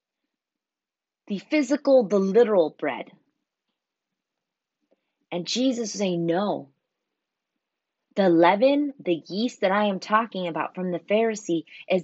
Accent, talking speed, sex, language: American, 115 wpm, female, English